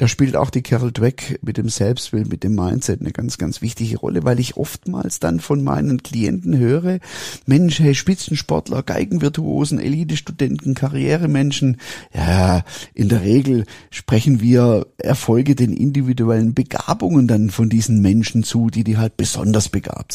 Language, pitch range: German, 110-140 Hz